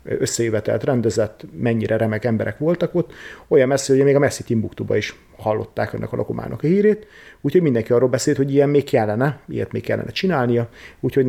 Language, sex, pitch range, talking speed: Hungarian, male, 110-125 Hz, 180 wpm